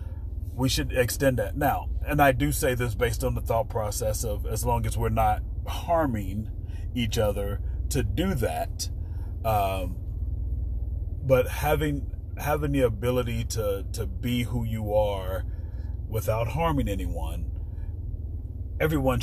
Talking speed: 135 wpm